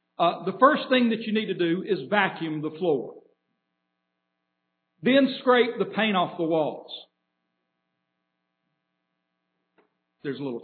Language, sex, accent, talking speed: English, male, American, 130 wpm